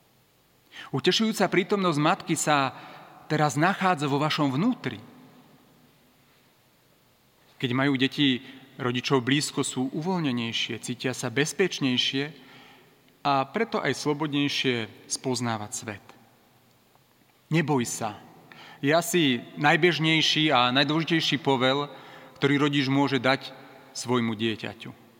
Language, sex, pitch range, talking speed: Slovak, male, 125-150 Hz, 95 wpm